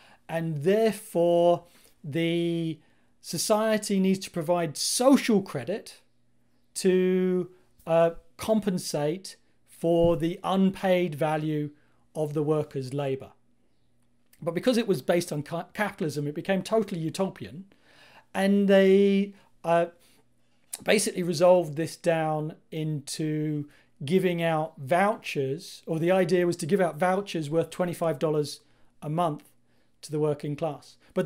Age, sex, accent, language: 40-59, male, British, English